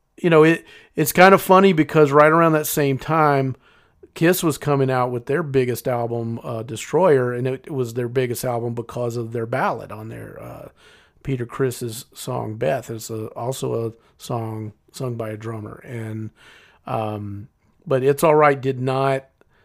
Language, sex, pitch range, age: English, male, 115-145 Hz, 40-59